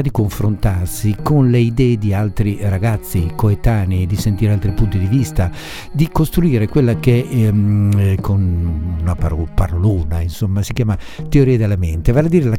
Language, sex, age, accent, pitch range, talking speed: Italian, male, 60-79, native, 95-120 Hz, 155 wpm